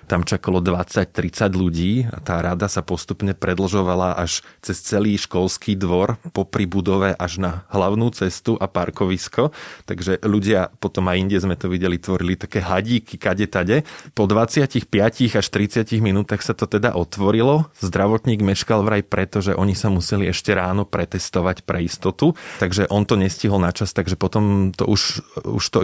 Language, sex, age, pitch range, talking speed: Slovak, male, 20-39, 95-110 Hz, 160 wpm